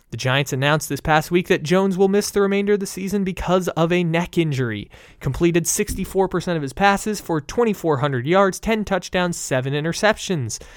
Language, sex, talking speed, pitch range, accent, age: English, male, 180 wpm, 135-180 Hz, American, 20-39